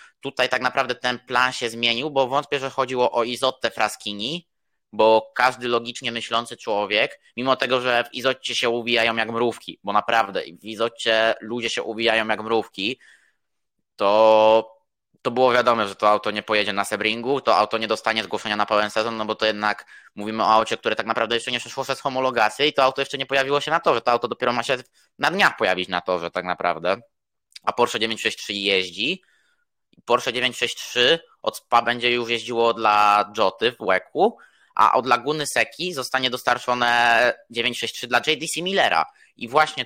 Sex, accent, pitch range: male, native, 110-135 Hz